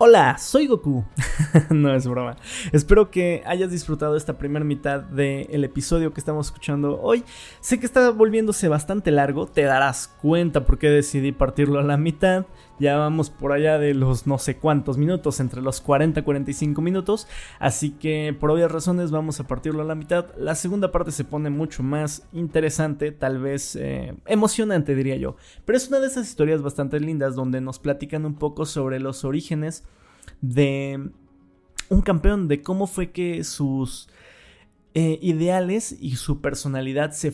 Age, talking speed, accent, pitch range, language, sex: 20-39, 170 wpm, Mexican, 140-160 Hz, Spanish, male